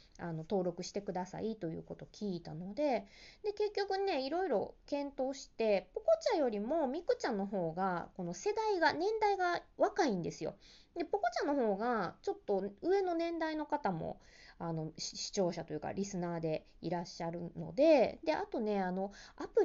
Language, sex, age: Japanese, female, 20-39